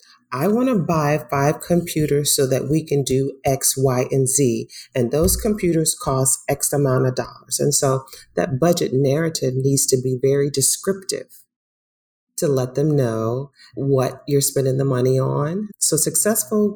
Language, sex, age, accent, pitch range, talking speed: English, female, 40-59, American, 135-175 Hz, 160 wpm